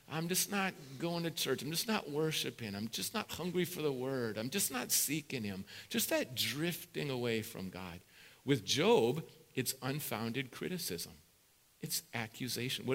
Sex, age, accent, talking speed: male, 50-69, American, 165 wpm